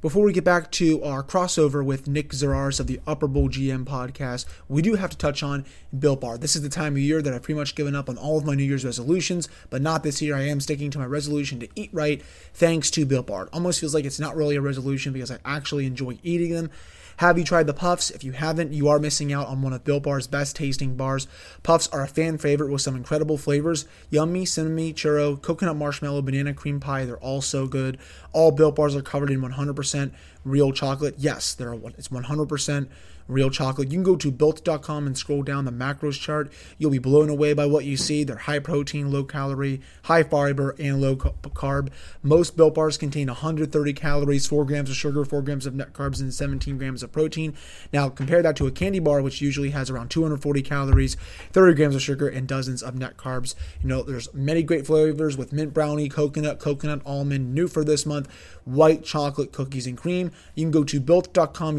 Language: English